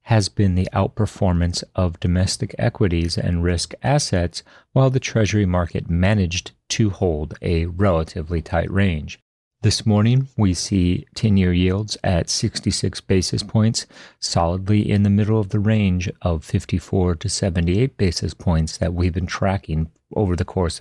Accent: American